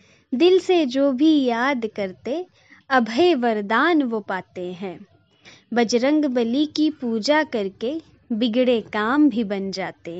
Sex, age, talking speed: female, 20-39, 125 wpm